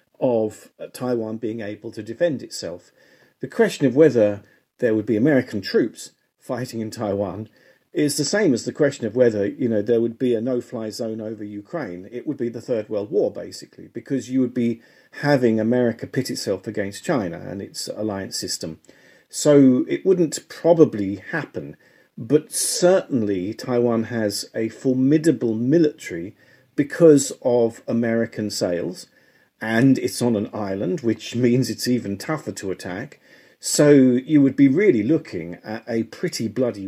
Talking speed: 160 wpm